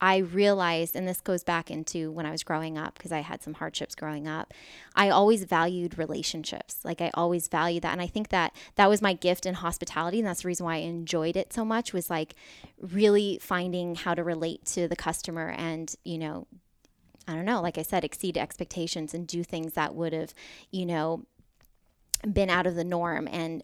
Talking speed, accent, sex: 210 wpm, American, female